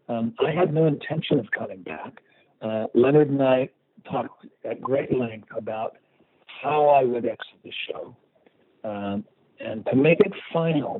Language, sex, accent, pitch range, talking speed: English, male, American, 110-135 Hz, 160 wpm